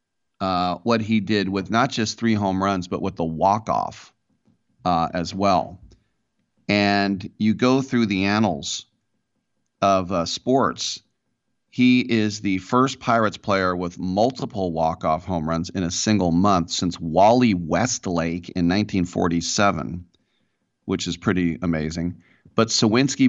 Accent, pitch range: American, 90-115 Hz